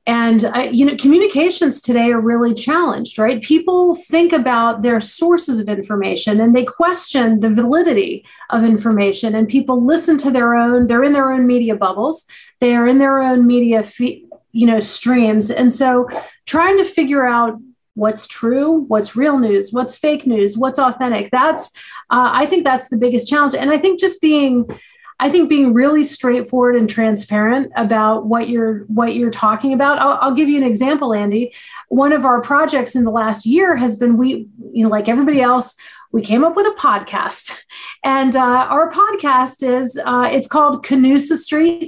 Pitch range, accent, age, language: 230-285 Hz, American, 40-59, English